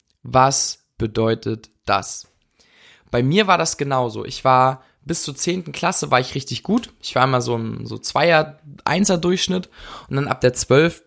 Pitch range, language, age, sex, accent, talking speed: 120-160 Hz, German, 20-39, male, German, 165 wpm